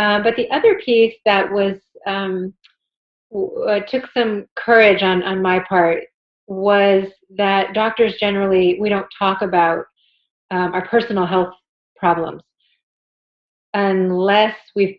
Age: 30-49